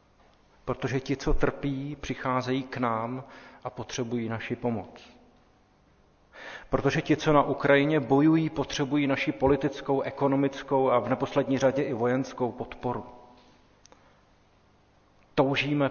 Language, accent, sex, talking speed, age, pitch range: Czech, native, male, 110 wpm, 40-59, 120-140 Hz